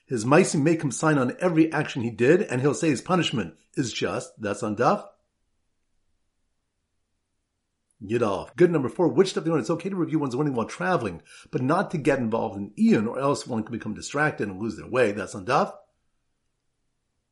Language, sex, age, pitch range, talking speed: English, male, 50-69, 115-170 Hz, 195 wpm